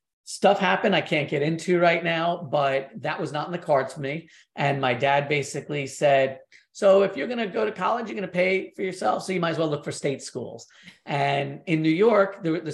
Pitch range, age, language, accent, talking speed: 140-185 Hz, 30-49, English, American, 240 wpm